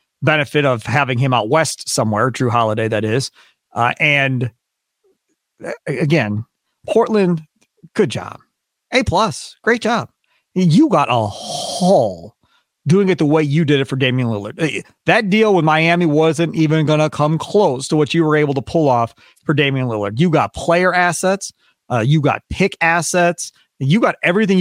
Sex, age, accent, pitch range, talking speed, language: male, 40-59, American, 140-175 Hz, 165 wpm, English